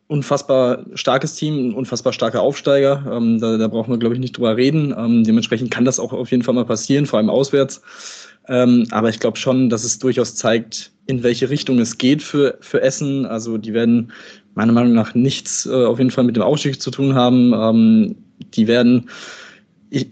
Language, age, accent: German, 20-39, German